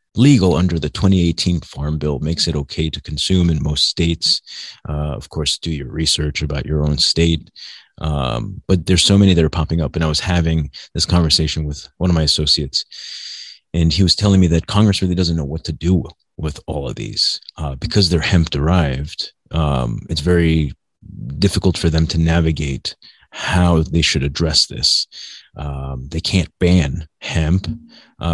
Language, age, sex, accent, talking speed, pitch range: English, 30-49, male, American, 180 wpm, 75-90 Hz